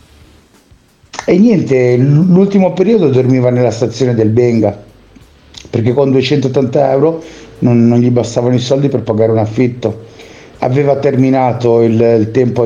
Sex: male